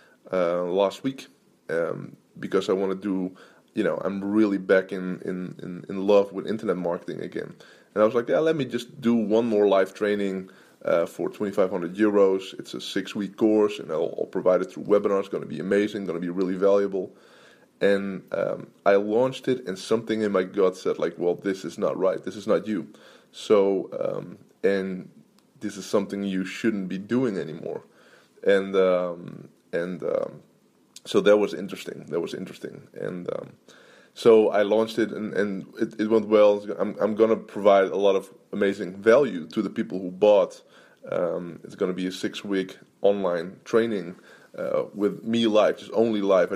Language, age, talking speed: English, 20-39, 190 wpm